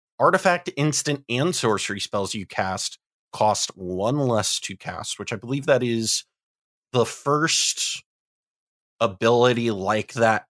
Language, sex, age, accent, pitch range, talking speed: English, male, 30-49, American, 105-135 Hz, 125 wpm